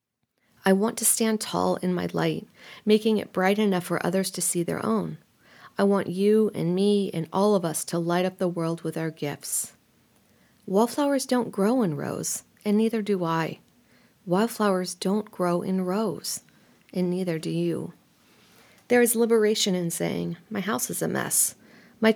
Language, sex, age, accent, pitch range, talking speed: English, female, 40-59, American, 170-210 Hz, 175 wpm